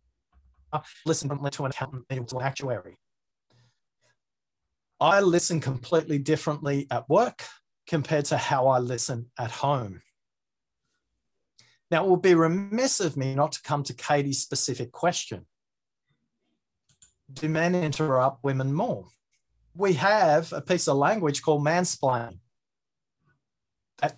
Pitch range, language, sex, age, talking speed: 125-160 Hz, English, male, 30-49, 115 wpm